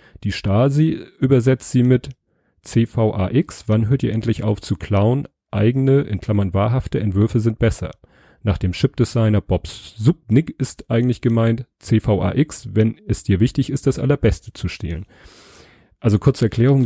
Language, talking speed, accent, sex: German, 145 wpm, German, male